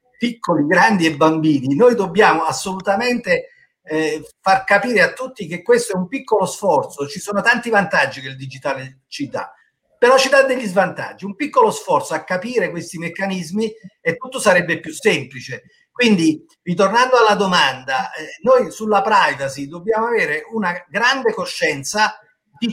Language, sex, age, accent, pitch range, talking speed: Italian, male, 50-69, native, 165-245 Hz, 155 wpm